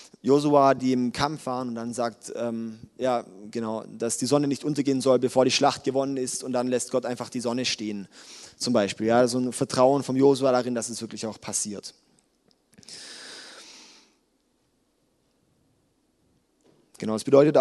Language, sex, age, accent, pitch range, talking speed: German, male, 20-39, German, 120-165 Hz, 160 wpm